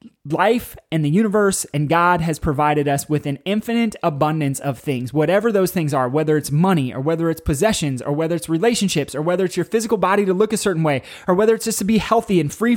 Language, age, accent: English, 20-39, American